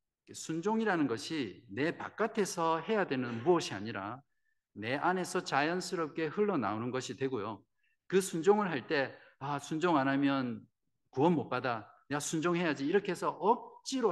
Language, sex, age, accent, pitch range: Korean, male, 50-69, native, 110-165 Hz